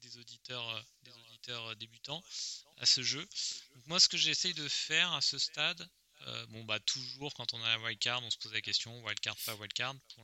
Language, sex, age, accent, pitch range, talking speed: French, male, 30-49, French, 110-130 Hz, 210 wpm